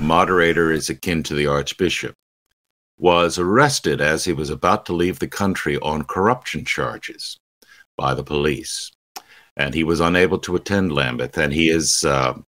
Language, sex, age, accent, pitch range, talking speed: English, male, 60-79, American, 70-90 Hz, 155 wpm